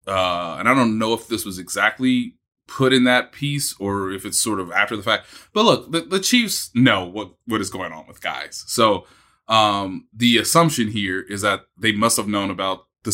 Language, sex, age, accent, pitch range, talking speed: English, male, 20-39, American, 100-125 Hz, 215 wpm